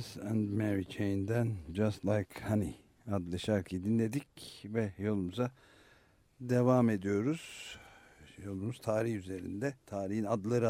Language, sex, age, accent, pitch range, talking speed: Turkish, male, 60-79, native, 95-115 Hz, 100 wpm